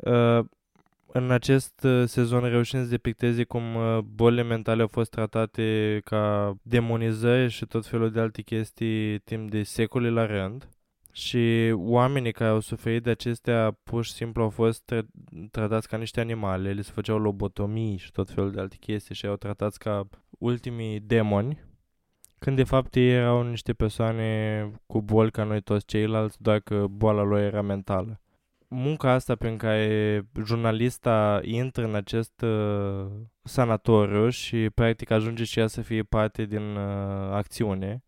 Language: Romanian